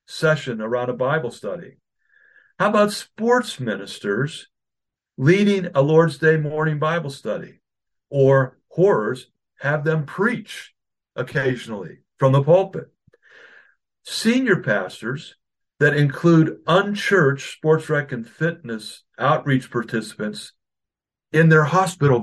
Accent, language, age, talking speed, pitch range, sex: American, English, 50-69, 105 wpm, 130-180 Hz, male